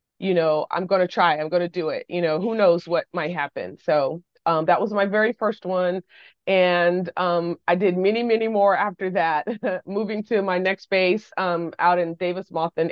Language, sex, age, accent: English, female, 30-49, American